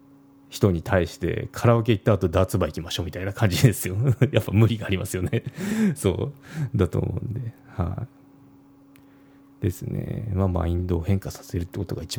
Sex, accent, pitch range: male, native, 95-140 Hz